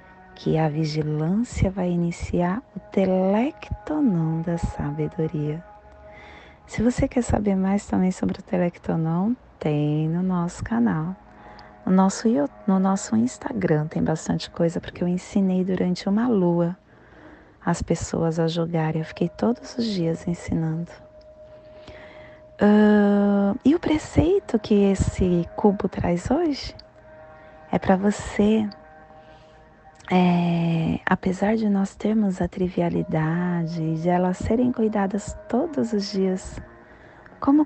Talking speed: 115 wpm